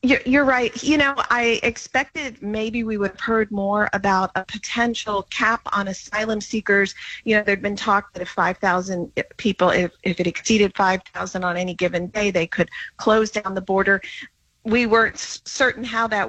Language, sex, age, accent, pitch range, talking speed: English, female, 40-59, American, 190-230 Hz, 175 wpm